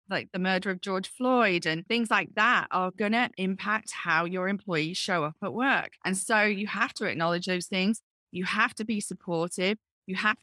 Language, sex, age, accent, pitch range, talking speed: English, female, 30-49, British, 175-205 Hz, 205 wpm